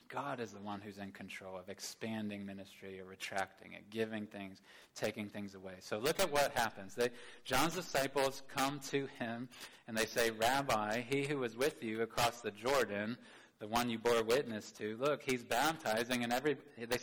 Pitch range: 105-125 Hz